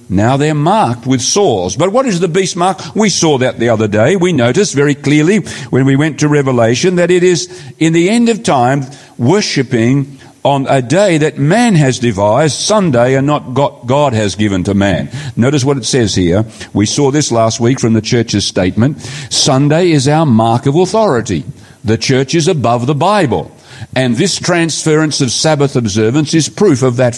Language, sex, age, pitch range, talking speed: English, male, 50-69, 125-180 Hz, 190 wpm